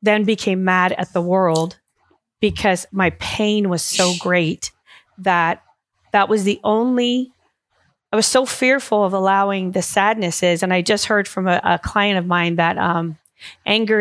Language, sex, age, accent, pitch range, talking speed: English, female, 40-59, American, 175-205 Hz, 165 wpm